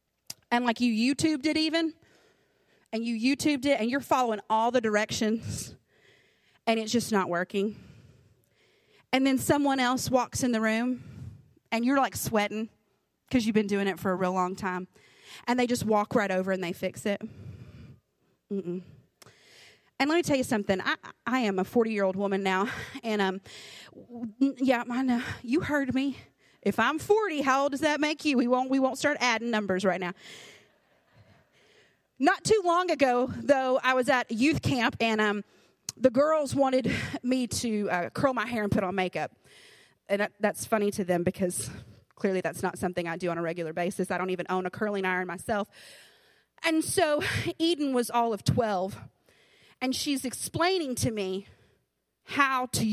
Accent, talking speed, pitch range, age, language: American, 175 wpm, 195-270 Hz, 30-49, English